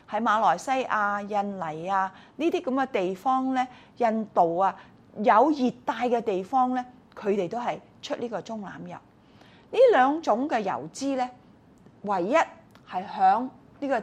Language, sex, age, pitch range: Chinese, female, 30-49, 200-270 Hz